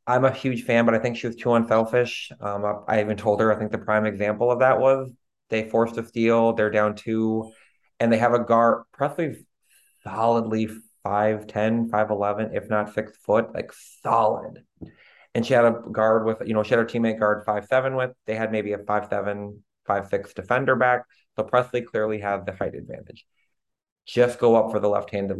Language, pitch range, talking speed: English, 100-115 Hz, 210 wpm